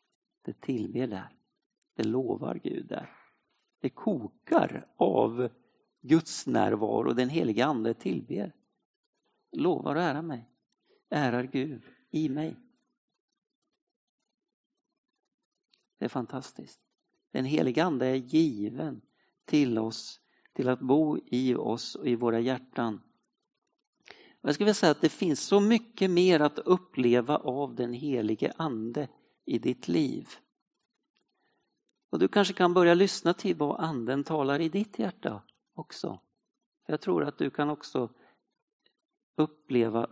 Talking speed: 130 wpm